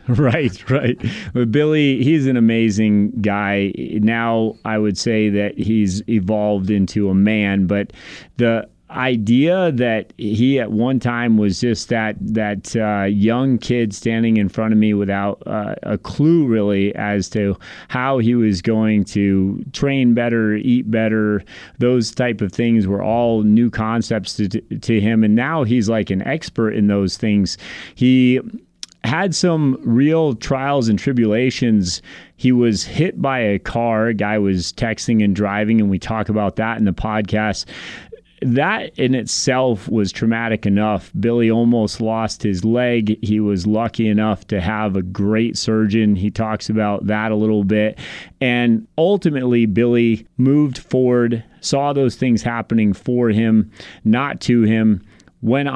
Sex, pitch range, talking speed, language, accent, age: male, 105-120 Hz, 155 wpm, English, American, 30-49